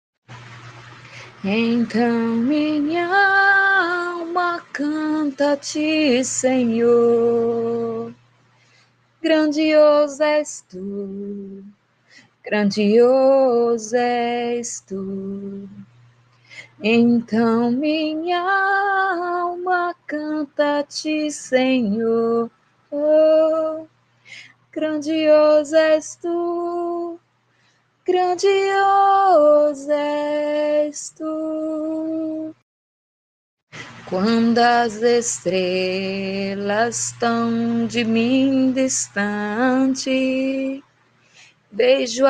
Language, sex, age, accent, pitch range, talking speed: Portuguese, female, 20-39, Brazilian, 210-300 Hz, 50 wpm